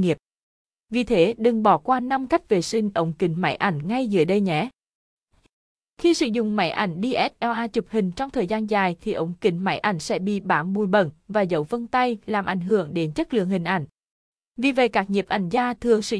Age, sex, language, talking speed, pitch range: 20-39, female, Vietnamese, 220 wpm, 185-230 Hz